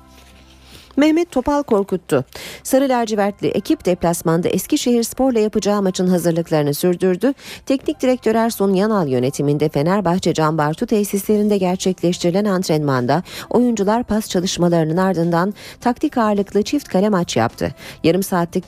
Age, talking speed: 40-59, 110 wpm